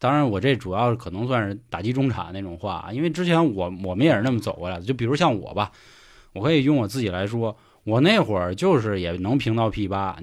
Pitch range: 100-135 Hz